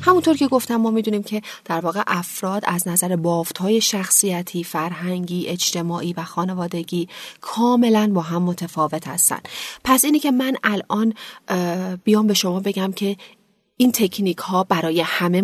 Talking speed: 145 wpm